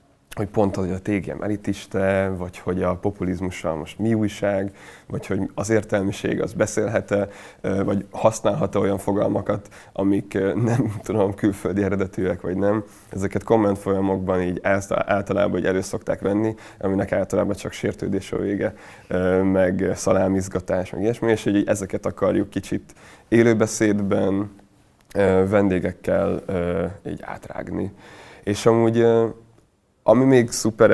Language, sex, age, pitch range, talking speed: Hungarian, male, 20-39, 95-110 Hz, 120 wpm